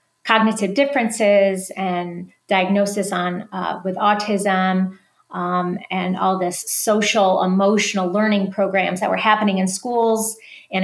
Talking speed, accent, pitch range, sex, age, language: 120 wpm, American, 190-220 Hz, female, 30-49, English